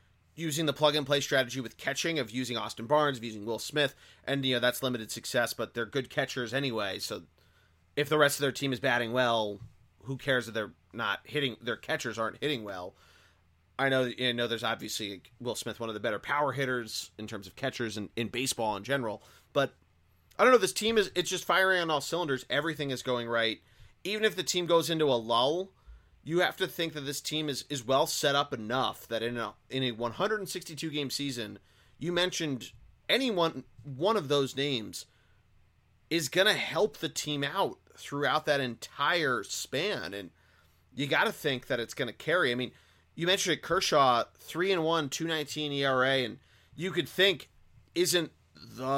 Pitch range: 115-160 Hz